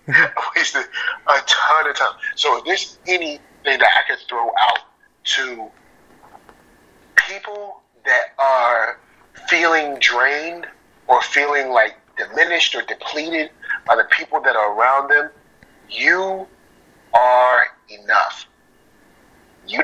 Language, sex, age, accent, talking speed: English, male, 30-49, American, 115 wpm